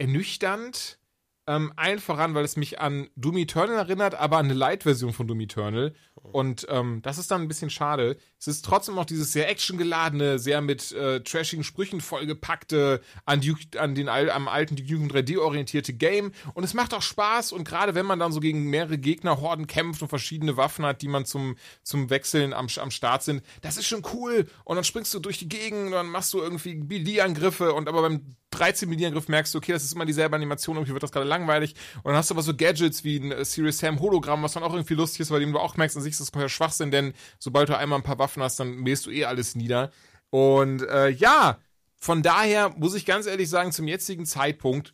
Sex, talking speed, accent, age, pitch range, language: male, 220 wpm, German, 30-49, 135-170 Hz, German